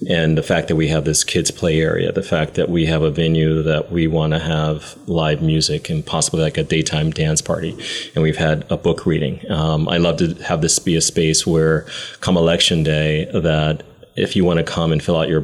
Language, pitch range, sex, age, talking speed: English, 80-85 Hz, male, 30-49, 235 wpm